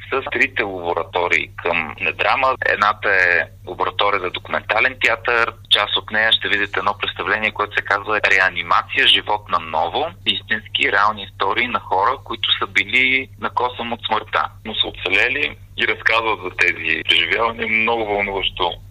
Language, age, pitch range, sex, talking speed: Bulgarian, 30-49, 95-105 Hz, male, 145 wpm